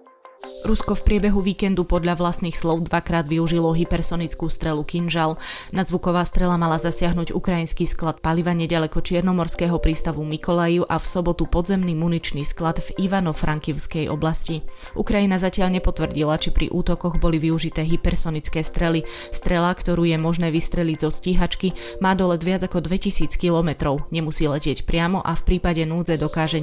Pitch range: 155-175 Hz